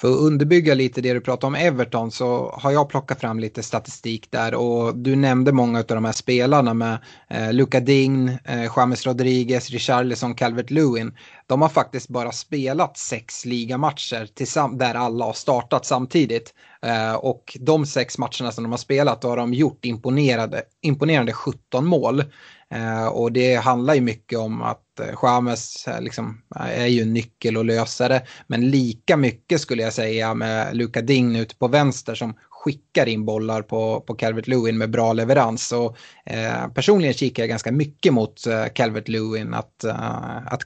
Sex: male